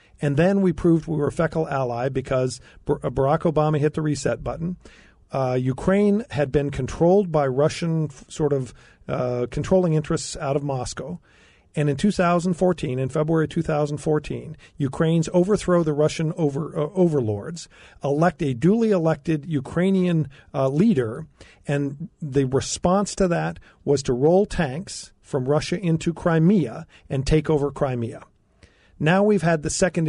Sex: male